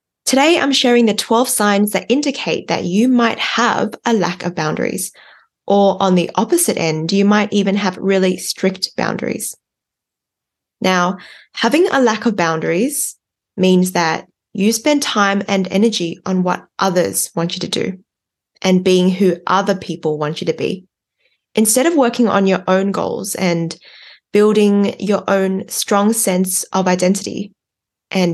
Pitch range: 185-220 Hz